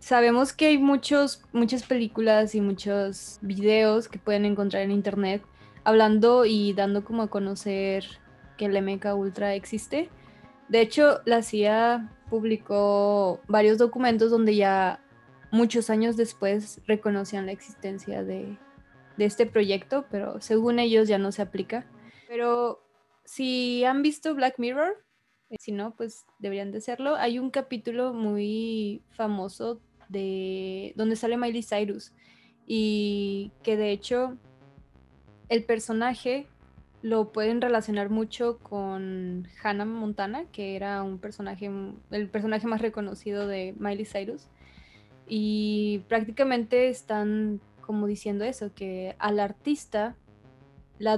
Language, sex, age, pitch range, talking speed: Spanish, female, 20-39, 200-230 Hz, 125 wpm